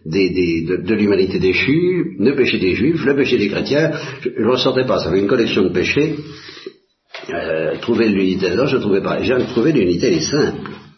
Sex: male